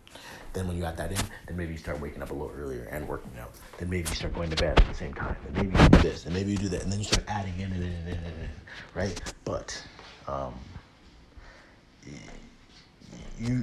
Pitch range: 85-100 Hz